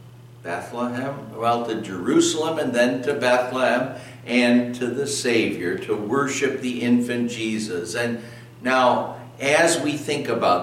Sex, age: male, 60-79